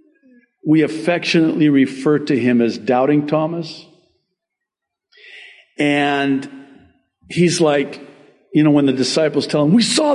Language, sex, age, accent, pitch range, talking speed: English, male, 50-69, American, 125-210 Hz, 120 wpm